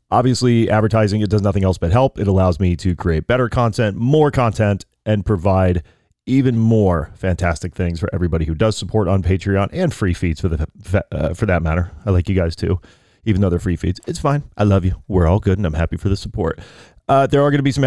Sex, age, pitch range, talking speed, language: male, 30-49, 95-115 Hz, 235 wpm, English